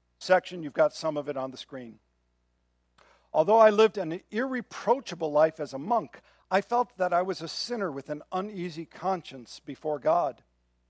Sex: male